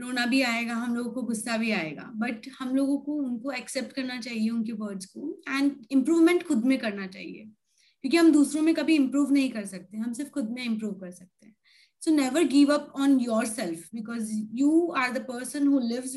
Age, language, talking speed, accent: 20-39, Hindi, 210 wpm, native